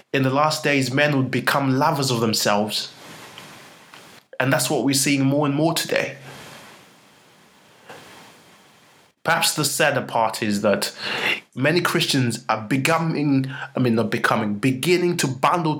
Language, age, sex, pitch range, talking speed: English, 20-39, male, 120-150 Hz, 135 wpm